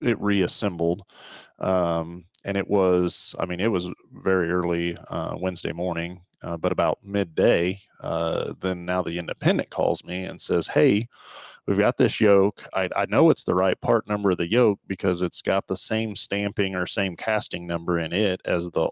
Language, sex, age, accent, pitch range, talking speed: English, male, 30-49, American, 85-100 Hz, 185 wpm